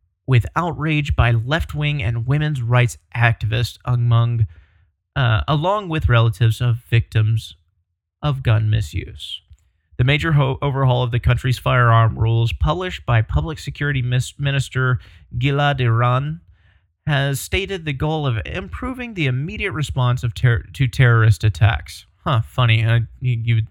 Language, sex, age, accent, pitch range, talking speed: English, male, 30-49, American, 105-135 Hz, 140 wpm